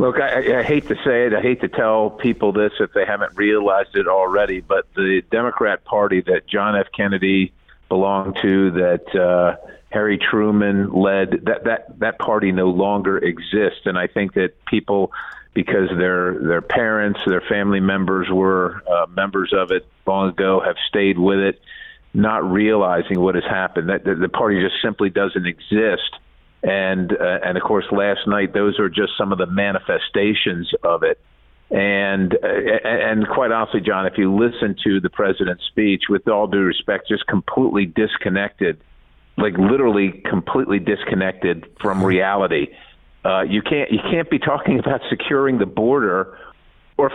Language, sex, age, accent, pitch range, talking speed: English, male, 50-69, American, 95-115 Hz, 165 wpm